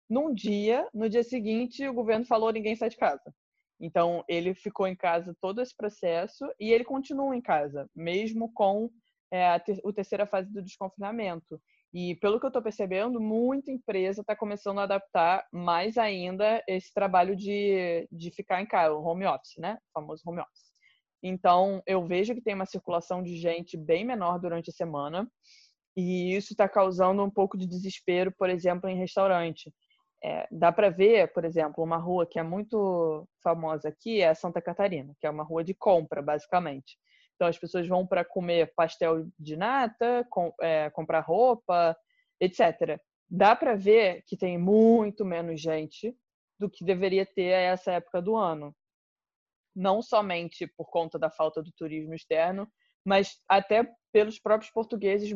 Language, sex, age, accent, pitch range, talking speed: Portuguese, female, 20-39, Brazilian, 170-220 Hz, 170 wpm